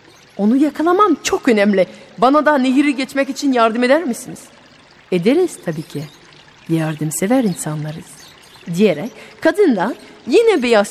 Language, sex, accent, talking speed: Turkish, female, native, 120 wpm